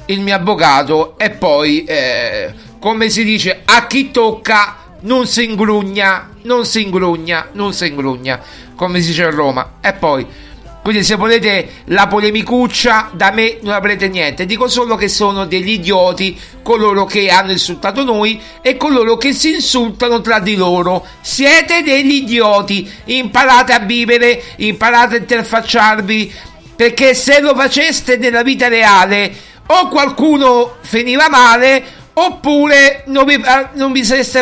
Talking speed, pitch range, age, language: 145 wpm, 200-255 Hz, 50-69, Italian